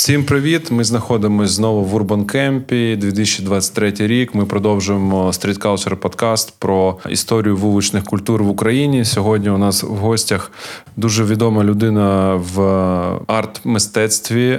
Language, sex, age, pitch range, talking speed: Ukrainian, male, 20-39, 95-110 Hz, 115 wpm